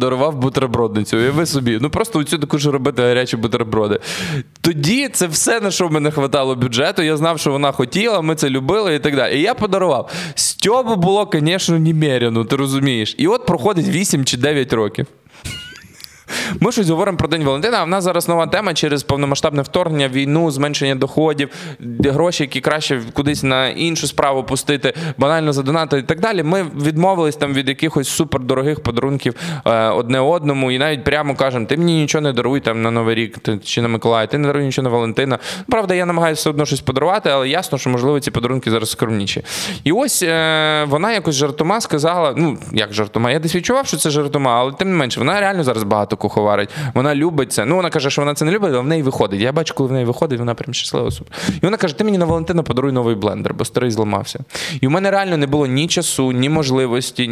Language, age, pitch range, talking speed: Ukrainian, 20-39, 130-165 Hz, 205 wpm